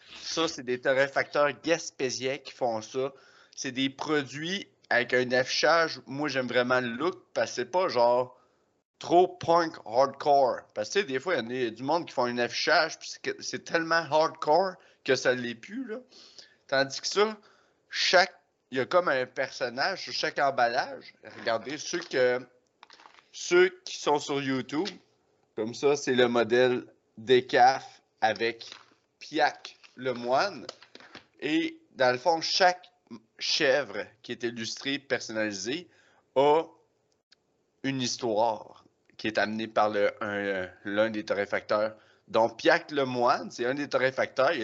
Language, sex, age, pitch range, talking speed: French, male, 30-49, 120-155 Hz, 155 wpm